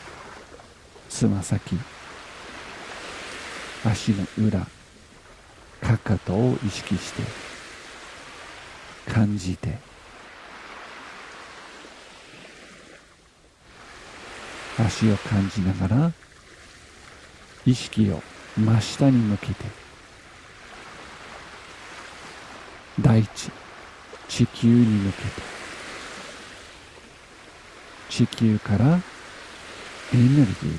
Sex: male